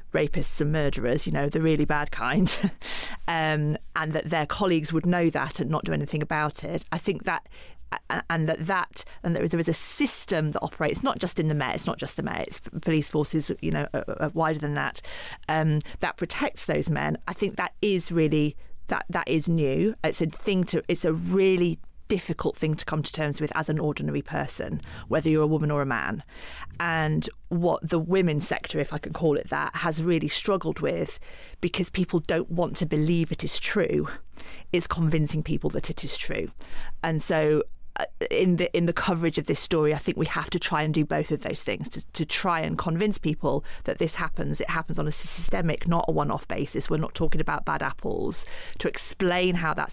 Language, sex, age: English, female, 40-59